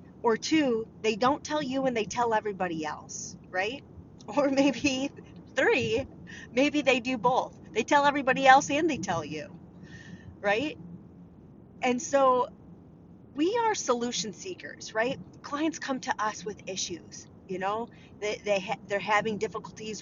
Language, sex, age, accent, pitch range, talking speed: English, female, 30-49, American, 205-270 Hz, 150 wpm